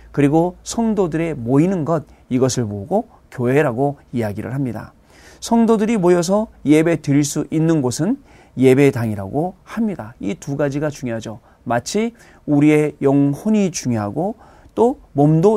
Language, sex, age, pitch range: Korean, male, 40-59, 120-175 Hz